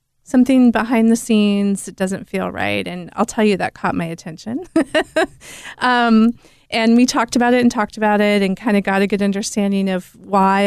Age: 30-49